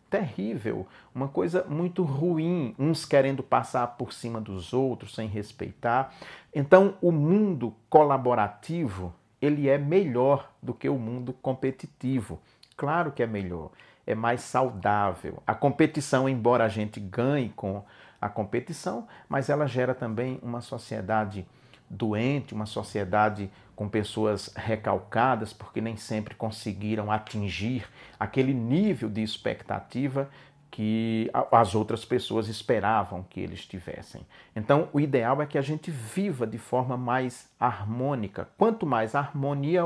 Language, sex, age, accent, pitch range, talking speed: Portuguese, male, 50-69, Brazilian, 110-140 Hz, 130 wpm